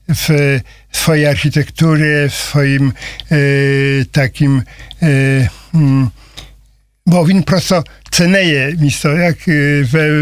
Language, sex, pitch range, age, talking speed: Russian, male, 135-160 Hz, 50-69, 95 wpm